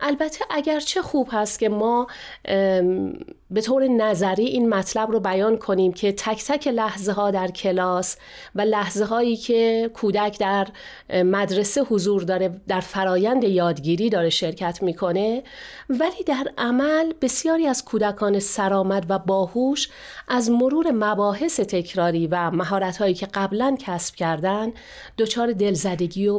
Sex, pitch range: female, 190-255 Hz